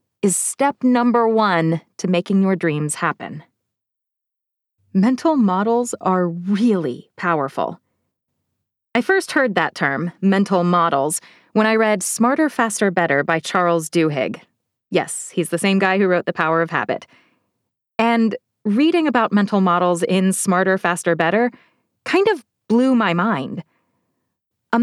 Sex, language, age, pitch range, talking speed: female, English, 20-39, 175-230 Hz, 135 wpm